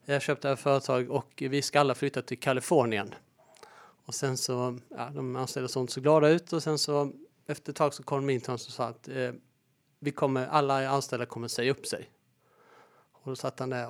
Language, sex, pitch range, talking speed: Swedish, male, 130-150 Hz, 205 wpm